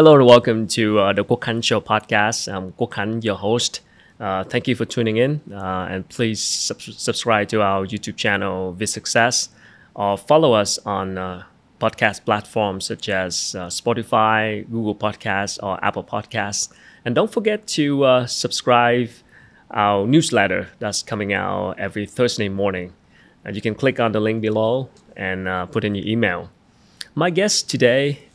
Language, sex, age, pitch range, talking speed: Vietnamese, male, 20-39, 100-125 Hz, 165 wpm